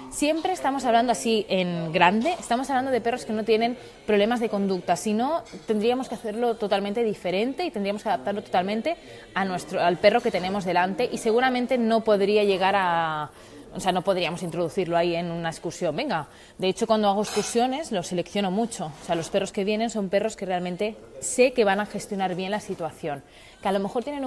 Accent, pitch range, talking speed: Spanish, 185-235 Hz, 200 wpm